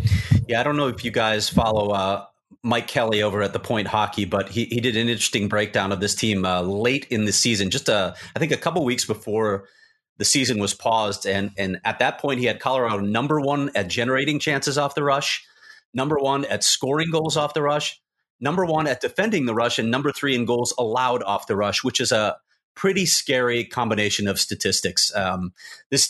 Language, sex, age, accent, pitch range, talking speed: English, male, 30-49, American, 105-140 Hz, 210 wpm